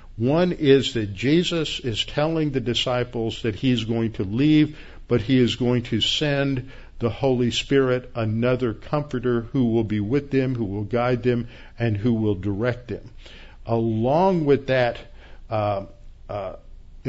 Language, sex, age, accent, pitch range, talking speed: English, male, 50-69, American, 115-140 Hz, 155 wpm